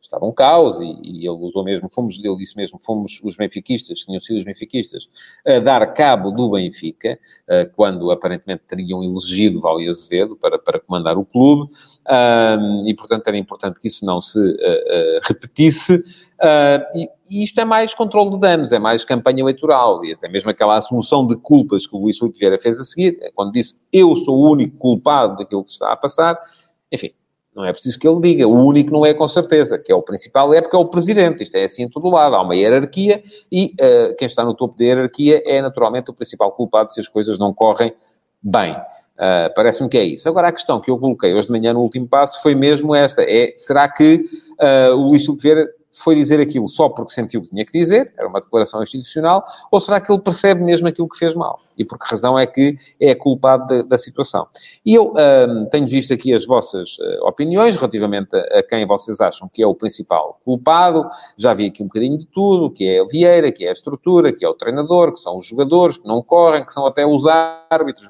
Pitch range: 110-175 Hz